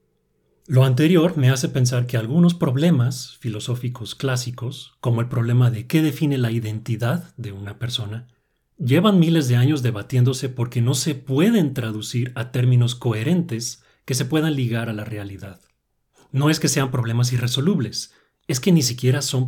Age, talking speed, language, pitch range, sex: 40-59, 160 wpm, Spanish, 115-140 Hz, male